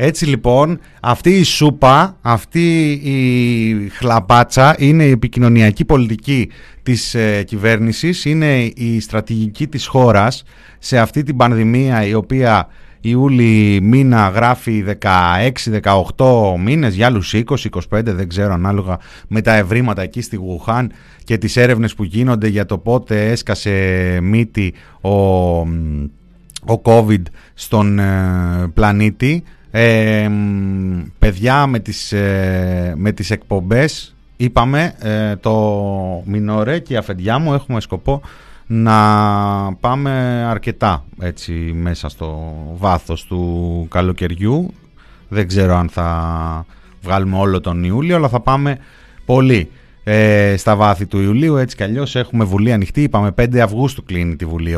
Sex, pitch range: male, 95-125 Hz